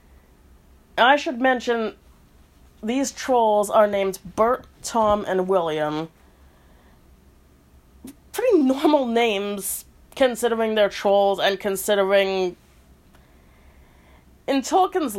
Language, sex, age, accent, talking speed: English, female, 30-49, American, 85 wpm